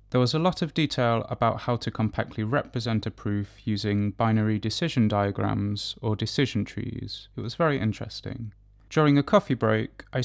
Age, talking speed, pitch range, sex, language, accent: 20-39, 170 wpm, 105-130 Hz, male, English, British